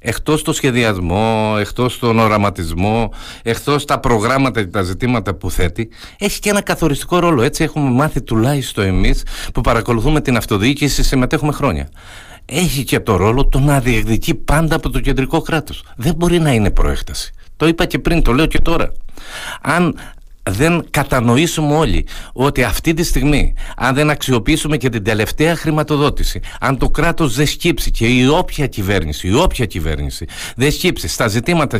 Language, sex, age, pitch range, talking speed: Greek, male, 50-69, 110-150 Hz, 160 wpm